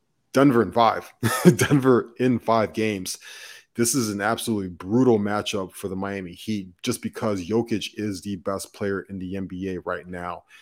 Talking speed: 165 wpm